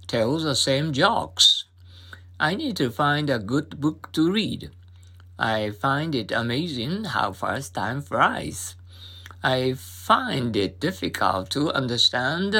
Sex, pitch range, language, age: male, 90-140 Hz, Japanese, 50-69